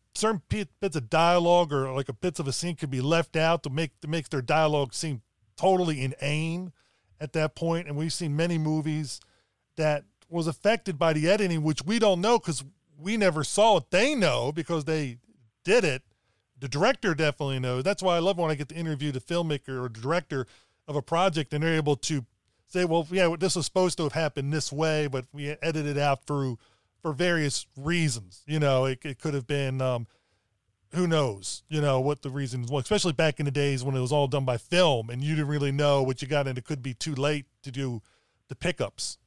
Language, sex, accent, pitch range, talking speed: English, male, American, 130-165 Hz, 220 wpm